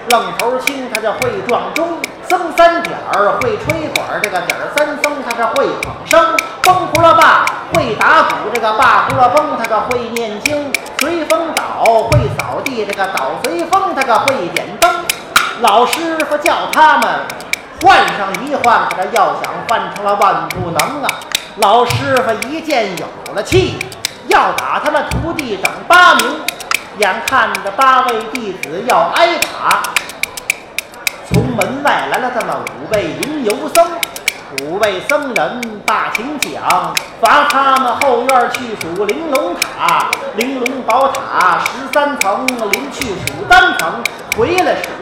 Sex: male